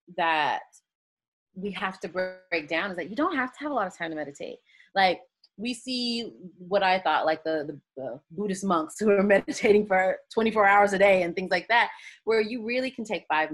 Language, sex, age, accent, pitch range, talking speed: English, female, 30-49, American, 180-240 Hz, 215 wpm